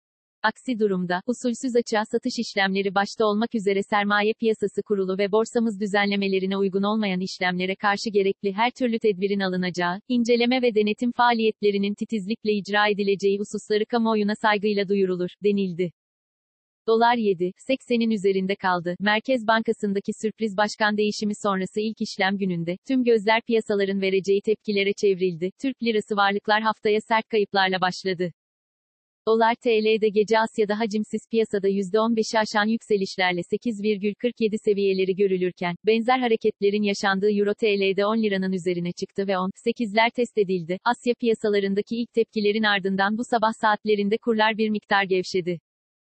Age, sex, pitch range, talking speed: 40-59, female, 195-225 Hz, 130 wpm